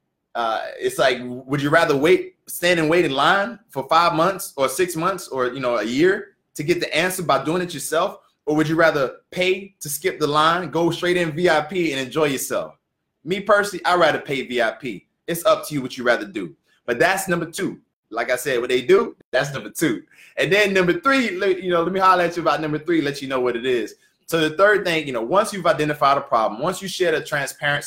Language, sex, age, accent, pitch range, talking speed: English, male, 20-39, American, 130-175 Hz, 235 wpm